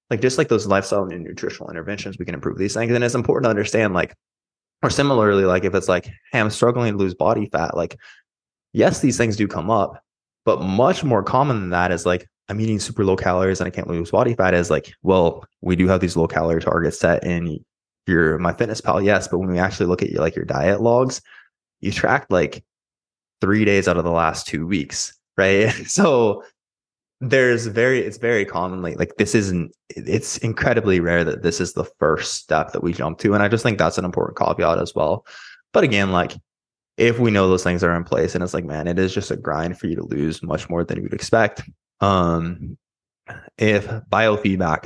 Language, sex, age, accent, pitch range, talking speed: English, male, 20-39, American, 85-115 Hz, 220 wpm